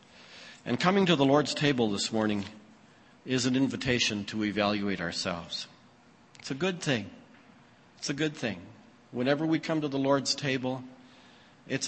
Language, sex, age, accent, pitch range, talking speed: English, male, 50-69, American, 120-155 Hz, 150 wpm